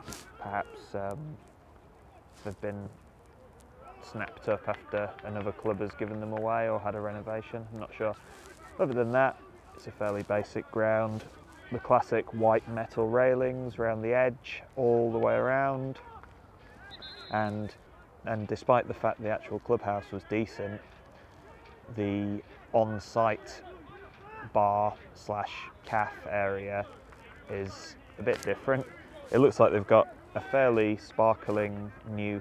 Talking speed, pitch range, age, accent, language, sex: 130 wpm, 100-115 Hz, 20-39, British, English, male